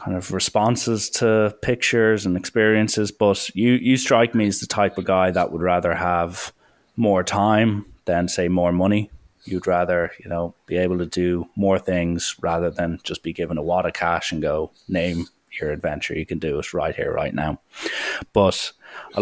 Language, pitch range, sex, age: English, 90-105 Hz, male, 20-39